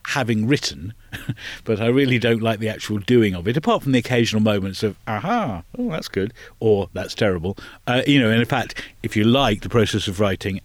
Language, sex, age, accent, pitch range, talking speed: English, male, 50-69, British, 105-125 Hz, 215 wpm